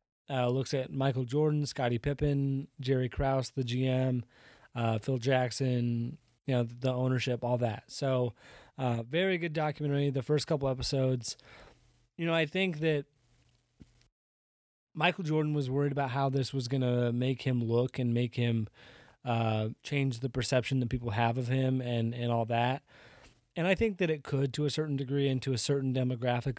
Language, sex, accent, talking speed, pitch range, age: English, male, American, 180 wpm, 125-145 Hz, 20-39